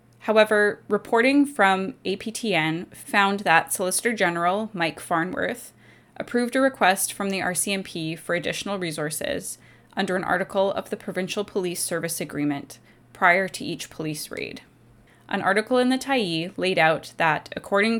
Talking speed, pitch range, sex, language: 140 wpm, 165-210 Hz, female, English